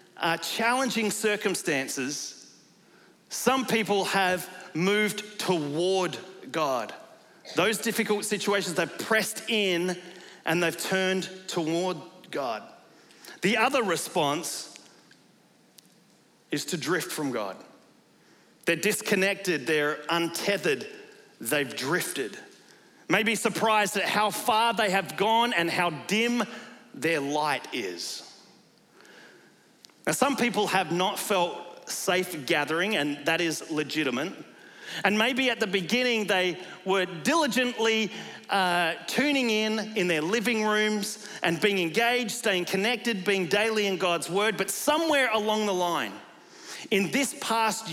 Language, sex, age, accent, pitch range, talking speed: English, male, 40-59, Australian, 175-220 Hz, 120 wpm